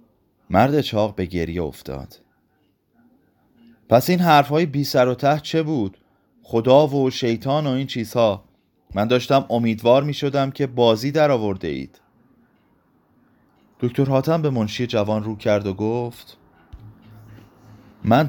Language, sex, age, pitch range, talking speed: Persian, male, 30-49, 105-140 Hz, 130 wpm